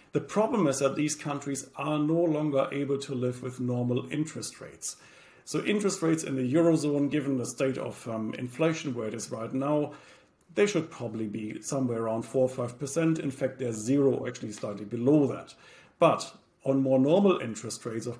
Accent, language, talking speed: German, English, 185 wpm